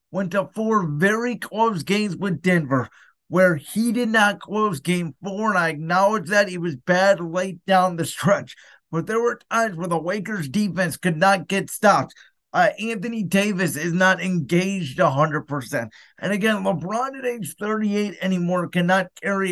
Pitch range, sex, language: 170-200 Hz, male, English